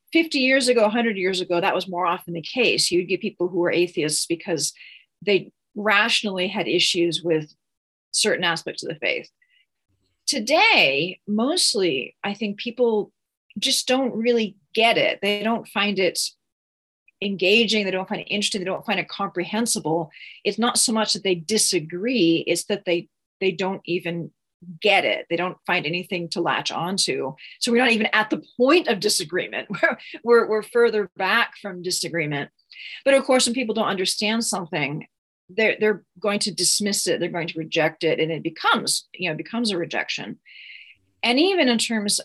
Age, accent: 40-59, American